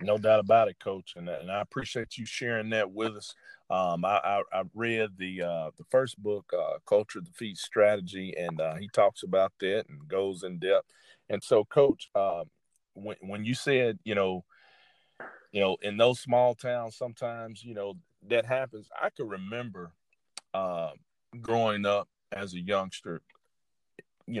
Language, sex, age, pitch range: English, male, 40-59, 95-120 Hz